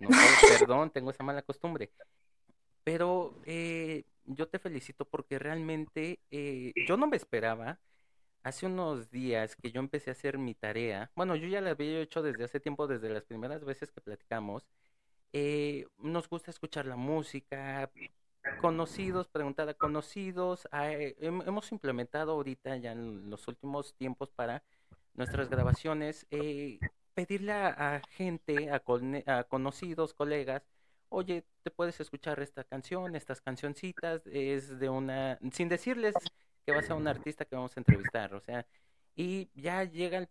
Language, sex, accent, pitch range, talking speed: Spanish, male, Mexican, 130-165 Hz, 155 wpm